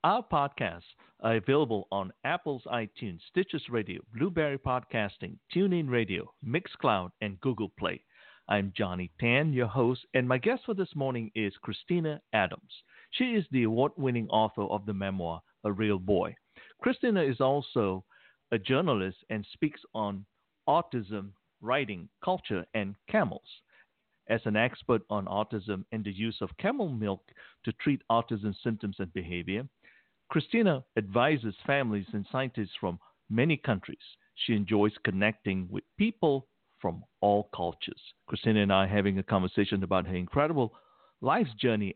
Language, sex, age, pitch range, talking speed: English, male, 50-69, 100-145 Hz, 145 wpm